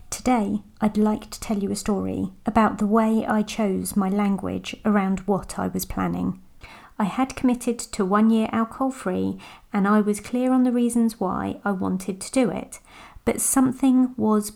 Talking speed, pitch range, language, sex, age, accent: 180 wpm, 200-235 Hz, English, female, 30-49, British